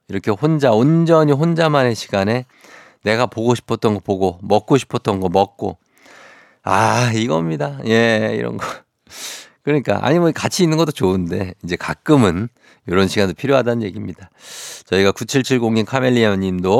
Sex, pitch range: male, 95-125 Hz